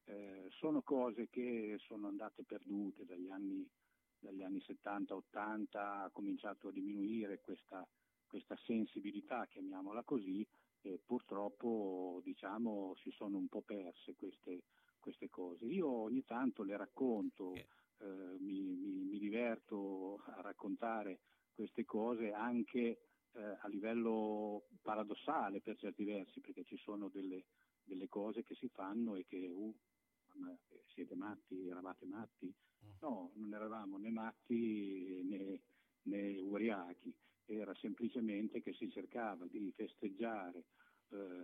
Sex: male